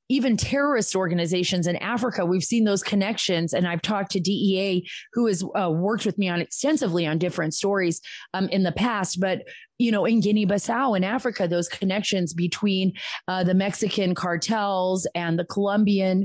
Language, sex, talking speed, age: English, female, 170 wpm, 30-49